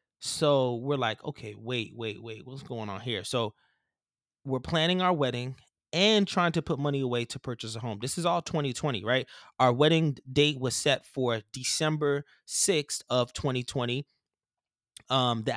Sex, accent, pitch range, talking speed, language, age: male, American, 120-145 Hz, 165 wpm, English, 20-39